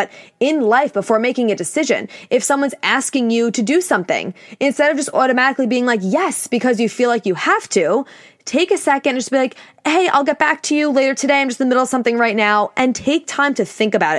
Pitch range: 205-270 Hz